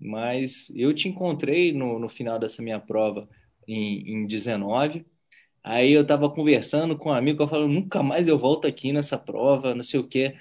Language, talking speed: Portuguese, 190 wpm